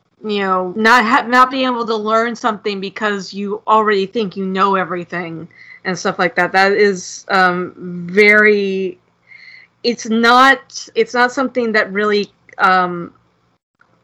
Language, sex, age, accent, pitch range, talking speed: English, female, 30-49, American, 185-220 Hz, 140 wpm